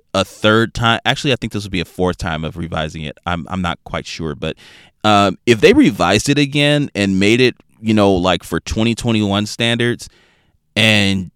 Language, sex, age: English, male, 30-49